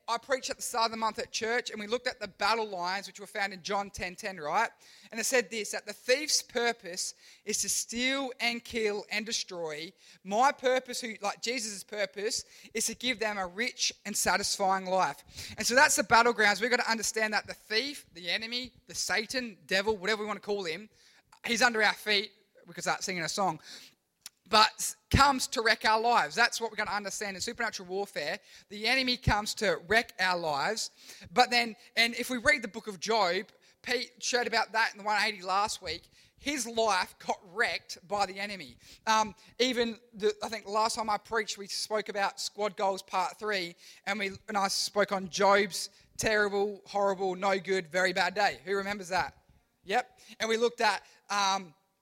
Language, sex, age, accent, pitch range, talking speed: English, male, 20-39, Australian, 195-230 Hz, 200 wpm